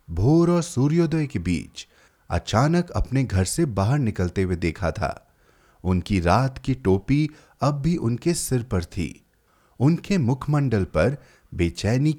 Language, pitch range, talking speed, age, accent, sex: Hindi, 100-155 Hz, 140 wpm, 30-49, native, male